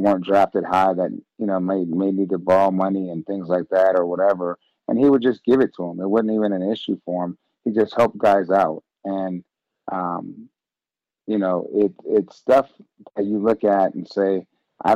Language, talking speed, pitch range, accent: English, 210 wpm, 95-110 Hz, American